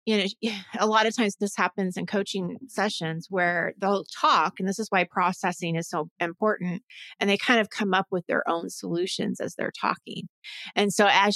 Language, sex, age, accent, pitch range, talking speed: English, female, 30-49, American, 180-215 Hz, 200 wpm